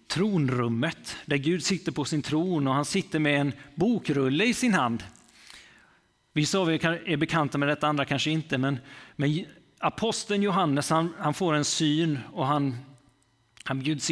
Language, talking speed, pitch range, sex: Swedish, 165 wpm, 130-165 Hz, male